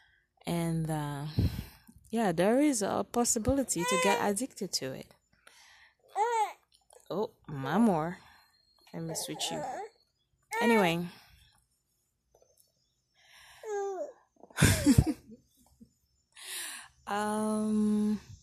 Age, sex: 20-39, female